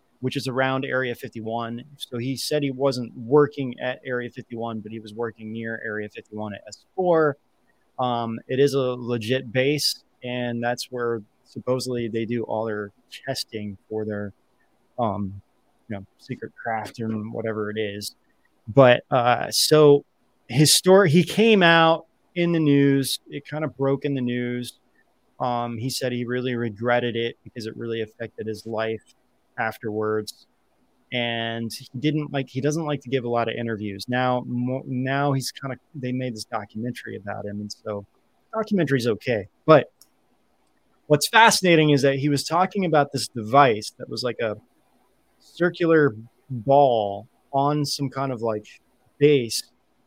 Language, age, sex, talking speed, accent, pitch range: English, 20-39, male, 160 wpm, American, 115-140 Hz